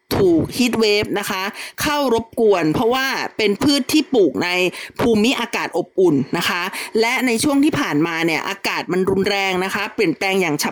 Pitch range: 200-270 Hz